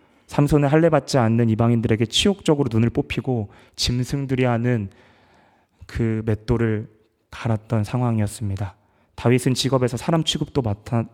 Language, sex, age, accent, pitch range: Korean, male, 20-39, native, 105-135 Hz